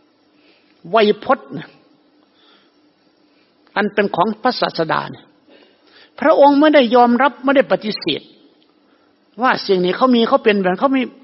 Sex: male